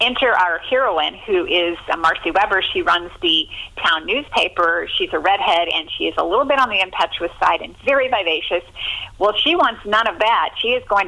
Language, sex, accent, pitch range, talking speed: English, female, American, 165-260 Hz, 200 wpm